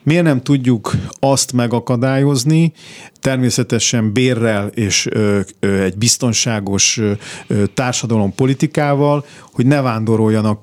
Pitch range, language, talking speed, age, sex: 110-135 Hz, Hungarian, 85 wpm, 50-69, male